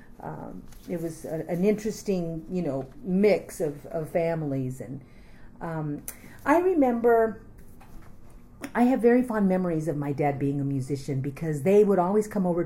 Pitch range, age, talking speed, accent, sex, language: 150-180 Hz, 40-59, 150 wpm, American, female, English